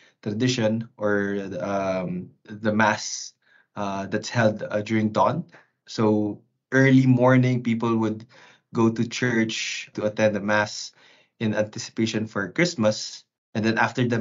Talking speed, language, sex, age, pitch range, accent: 135 wpm, English, male, 20-39, 105-125 Hz, Filipino